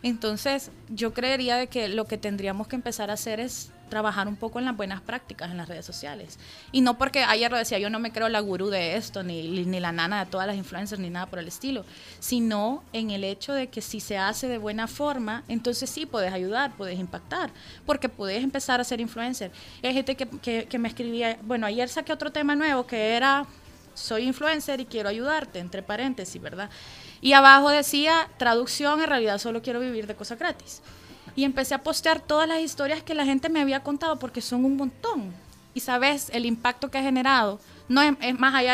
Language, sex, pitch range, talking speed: Spanish, female, 215-270 Hz, 215 wpm